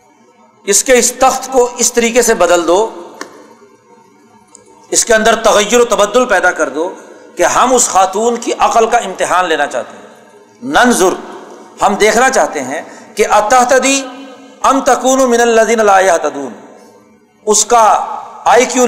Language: Urdu